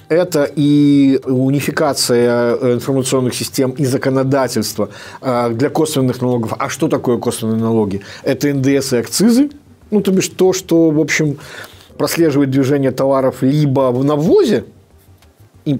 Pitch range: 115-150 Hz